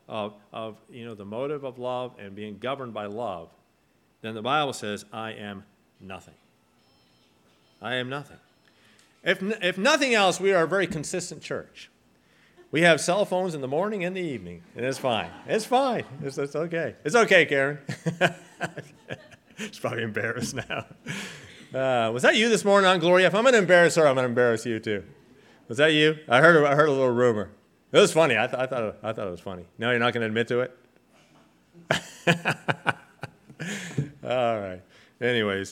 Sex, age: male, 40-59